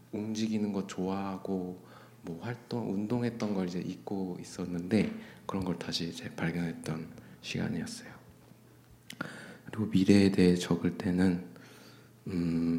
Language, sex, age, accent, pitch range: Korean, male, 20-39, native, 90-110 Hz